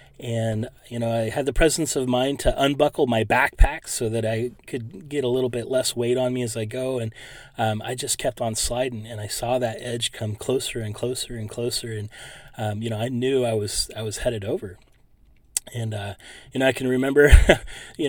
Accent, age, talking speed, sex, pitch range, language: American, 30-49, 220 wpm, male, 110-130 Hz, English